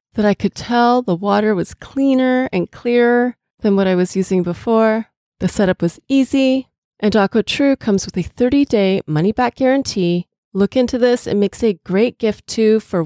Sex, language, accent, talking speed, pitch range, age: female, English, American, 190 wpm, 185-240 Hz, 30-49